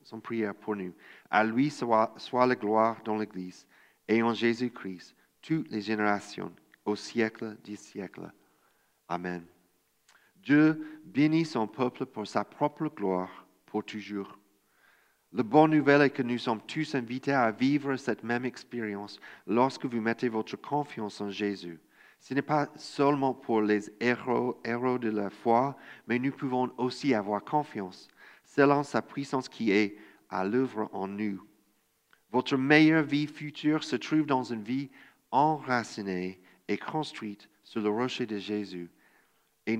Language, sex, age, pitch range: French, male, 40-59, 105-135 Hz